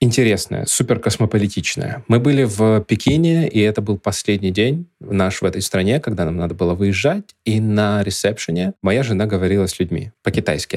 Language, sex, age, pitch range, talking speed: Russian, male, 20-39, 95-115 Hz, 160 wpm